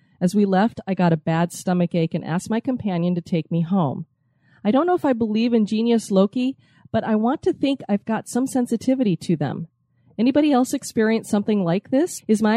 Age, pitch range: 30-49, 180-240 Hz